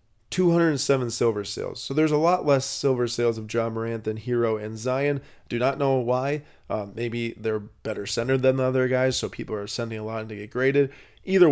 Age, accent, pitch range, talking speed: 20-39, American, 105-125 Hz, 215 wpm